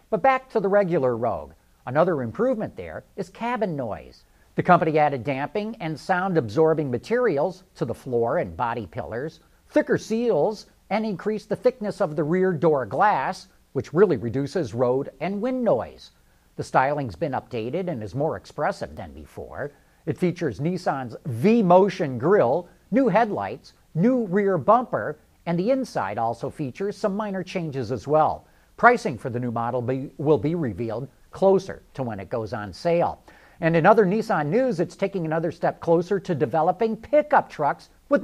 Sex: male